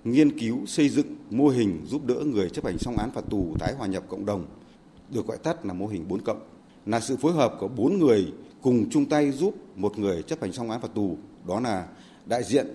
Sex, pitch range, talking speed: male, 110-150 Hz, 240 wpm